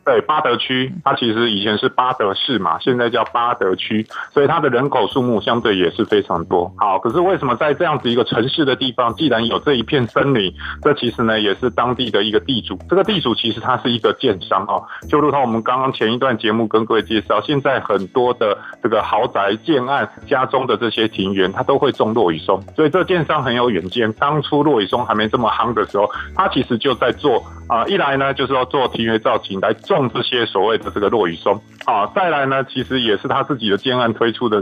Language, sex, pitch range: Chinese, male, 110-140 Hz